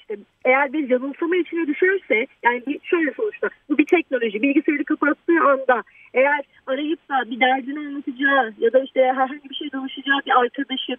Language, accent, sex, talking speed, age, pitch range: Turkish, native, female, 160 wpm, 30-49, 250-325 Hz